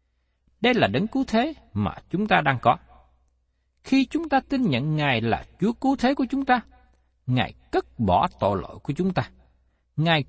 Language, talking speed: Vietnamese, 185 wpm